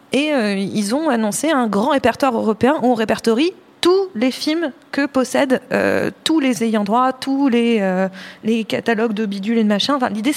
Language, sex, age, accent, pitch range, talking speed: French, female, 20-39, French, 220-275 Hz, 195 wpm